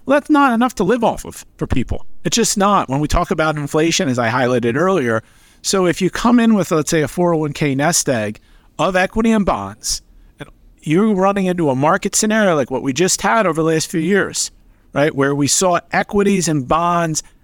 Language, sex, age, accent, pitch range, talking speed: English, male, 50-69, American, 145-200 Hz, 215 wpm